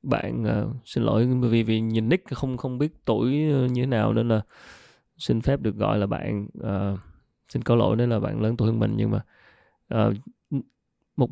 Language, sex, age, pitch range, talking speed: Vietnamese, male, 20-39, 110-140 Hz, 200 wpm